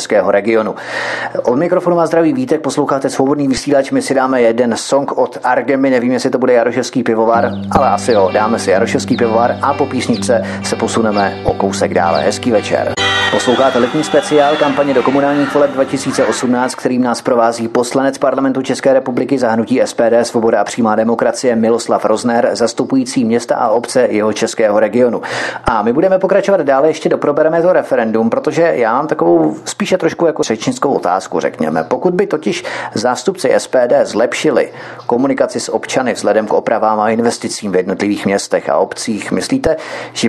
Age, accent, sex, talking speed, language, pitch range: 30-49, native, male, 165 wpm, Czech, 115-160 Hz